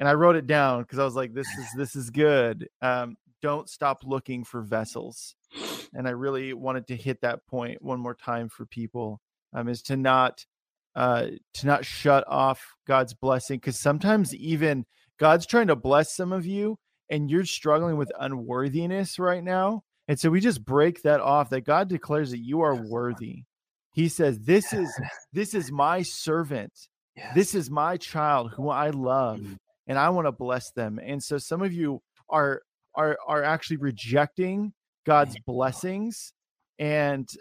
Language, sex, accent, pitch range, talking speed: English, male, American, 130-160 Hz, 175 wpm